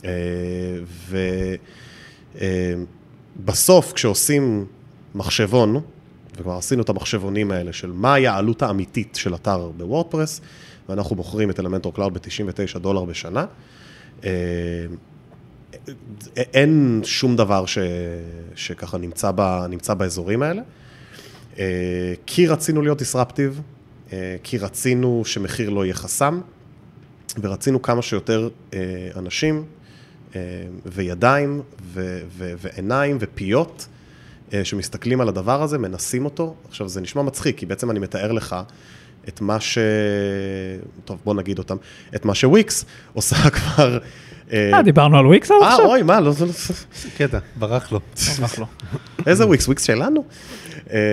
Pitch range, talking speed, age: 95-135 Hz, 110 wpm, 30-49